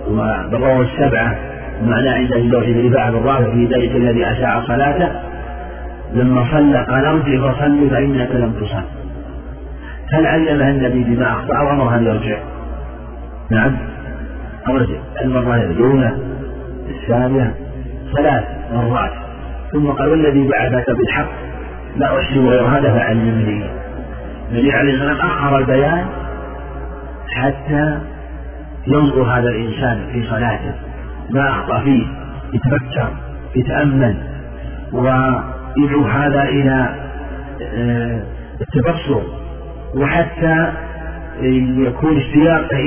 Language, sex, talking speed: Arabic, male, 100 wpm